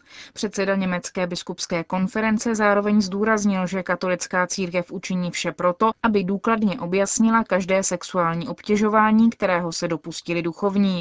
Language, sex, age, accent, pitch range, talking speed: Czech, female, 20-39, native, 185-225 Hz, 120 wpm